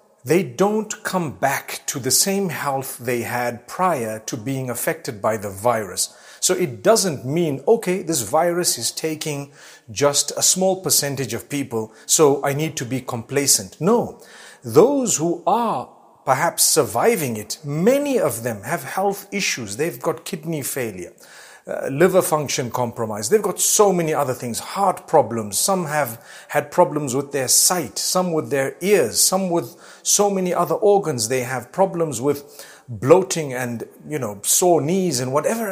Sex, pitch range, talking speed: male, 130-175 Hz, 160 wpm